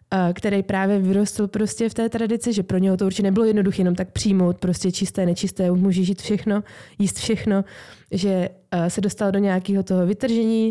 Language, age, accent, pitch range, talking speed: Czech, 20-39, native, 180-205 Hz, 175 wpm